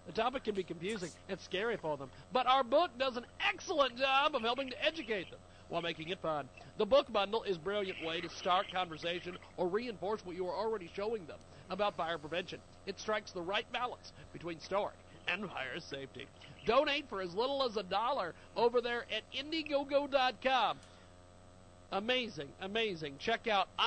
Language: English